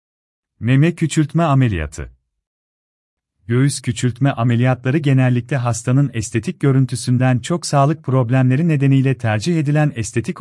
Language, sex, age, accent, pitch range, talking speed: Turkish, male, 40-59, native, 95-145 Hz, 100 wpm